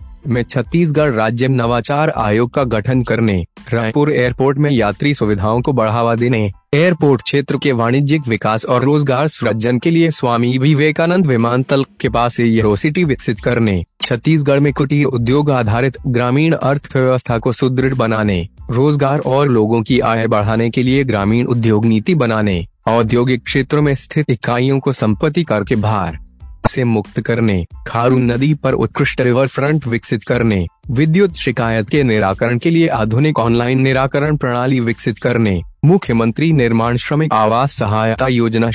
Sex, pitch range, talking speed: male, 115-140 Hz, 145 wpm